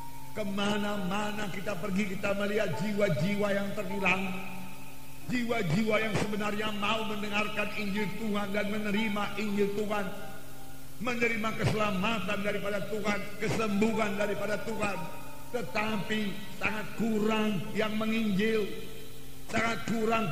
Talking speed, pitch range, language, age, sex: 95 wpm, 180-225 Hz, English, 50-69, male